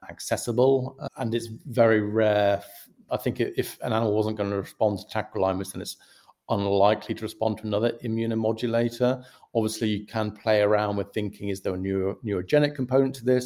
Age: 40-59